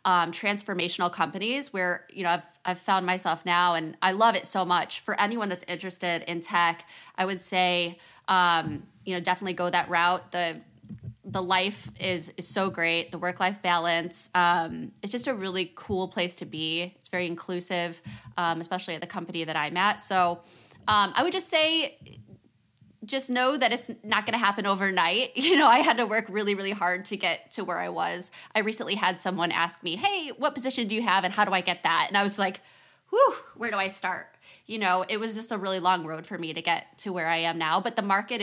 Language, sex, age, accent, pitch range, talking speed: English, female, 20-39, American, 175-210 Hz, 220 wpm